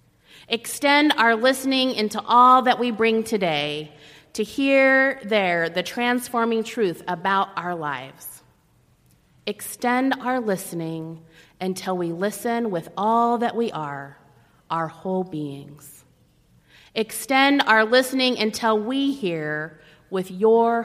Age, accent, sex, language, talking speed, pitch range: 30-49, American, female, English, 115 wpm, 160-230 Hz